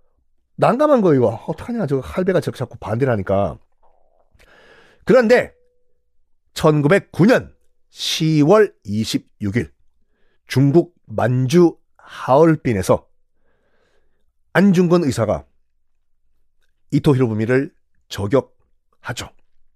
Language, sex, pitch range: Korean, male, 120-195 Hz